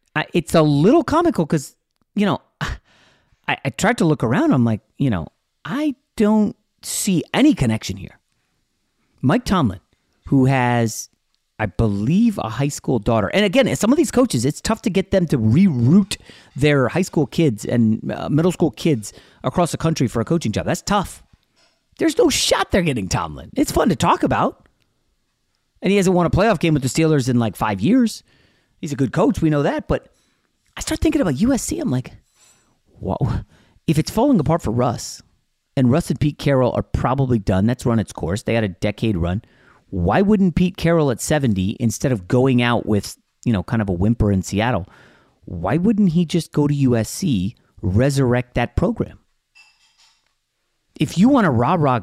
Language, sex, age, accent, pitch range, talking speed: English, male, 30-49, American, 120-185 Hz, 190 wpm